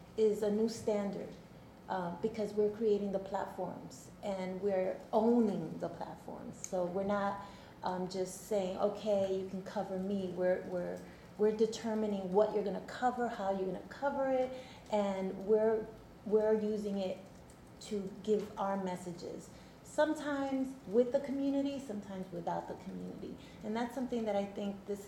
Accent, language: American, English